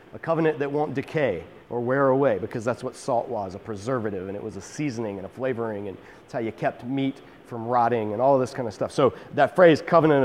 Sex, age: male, 40-59